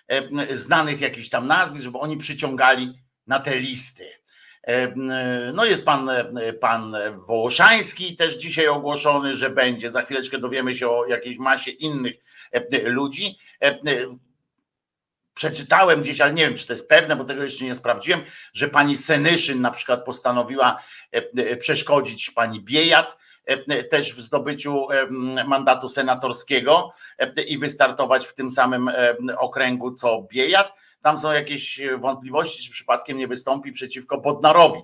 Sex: male